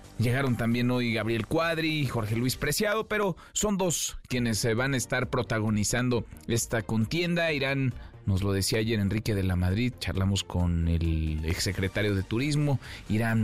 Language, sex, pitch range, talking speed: Spanish, male, 105-135 Hz, 160 wpm